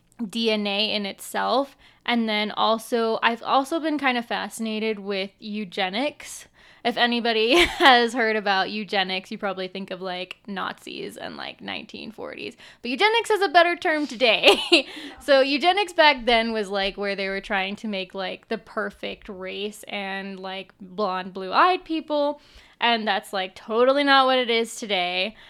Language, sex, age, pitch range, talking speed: English, female, 10-29, 200-235 Hz, 155 wpm